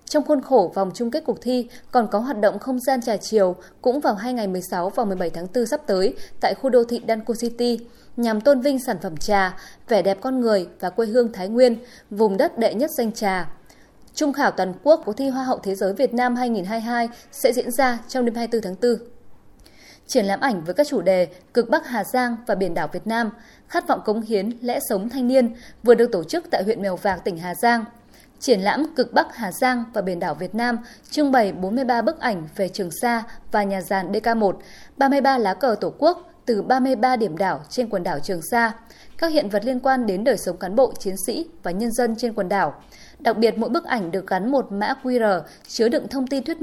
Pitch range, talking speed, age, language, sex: 200-255 Hz, 230 wpm, 20-39, Vietnamese, female